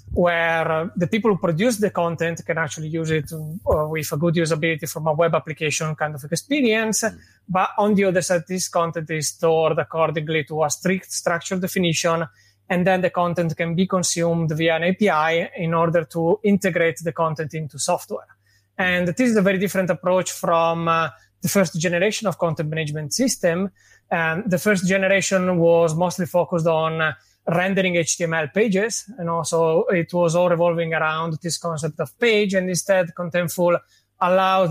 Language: English